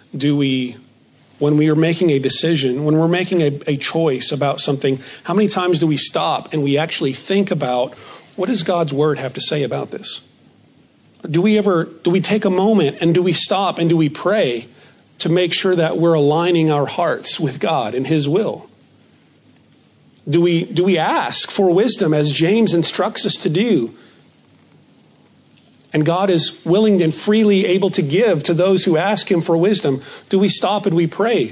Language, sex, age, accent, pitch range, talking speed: English, male, 40-59, American, 150-185 Hz, 190 wpm